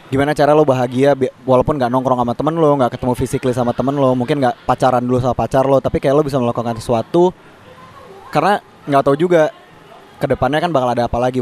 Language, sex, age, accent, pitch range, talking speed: Indonesian, male, 20-39, native, 130-155 Hz, 205 wpm